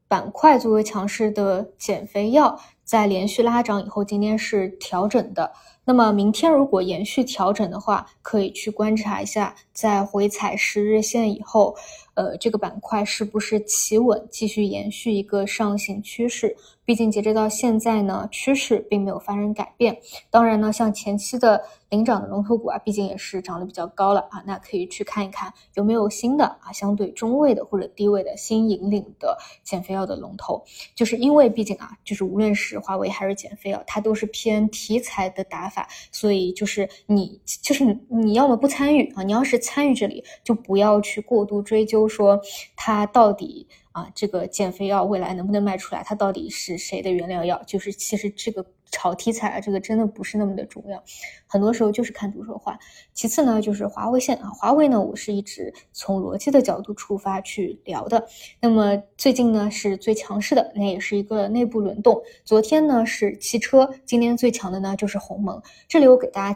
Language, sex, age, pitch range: Chinese, female, 20-39, 200-230 Hz